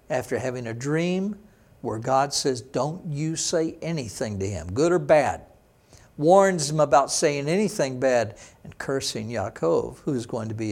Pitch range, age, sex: 130-185 Hz, 60-79, male